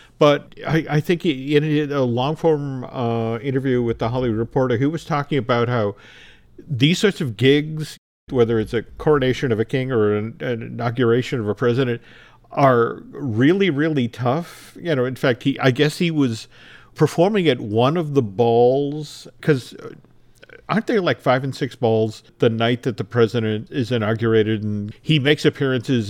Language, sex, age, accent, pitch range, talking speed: English, male, 50-69, American, 120-150 Hz, 170 wpm